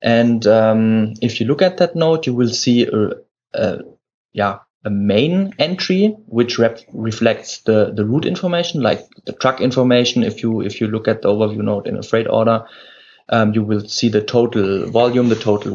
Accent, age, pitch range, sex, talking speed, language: German, 20-39, 110-140 Hz, male, 185 wpm, English